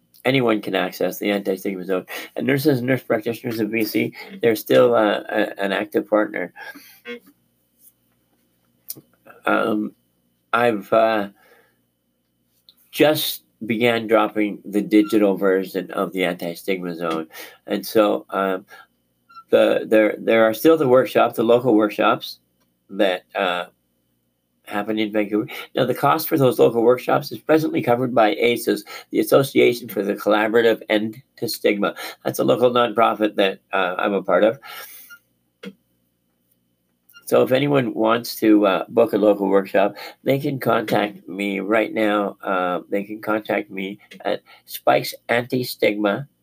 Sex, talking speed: male, 135 wpm